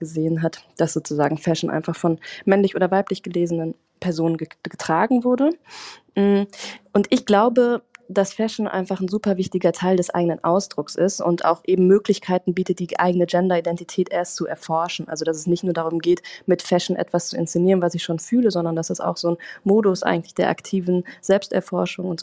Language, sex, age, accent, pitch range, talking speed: German, female, 20-39, German, 165-190 Hz, 185 wpm